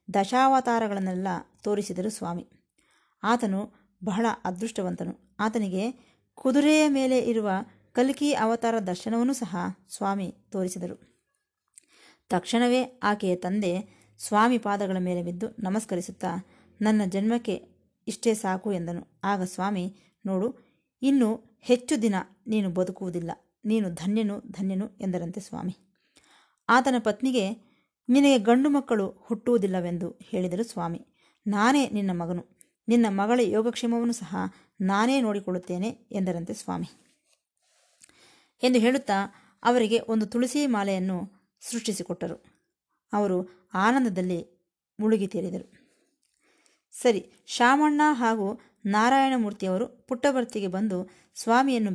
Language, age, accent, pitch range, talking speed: Kannada, 20-39, native, 190-240 Hz, 90 wpm